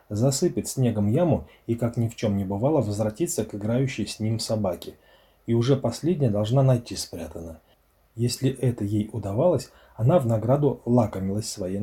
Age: 30-49